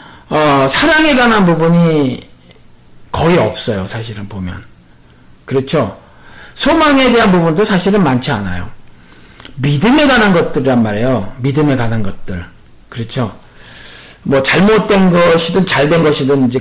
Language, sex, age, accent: Korean, male, 50-69, native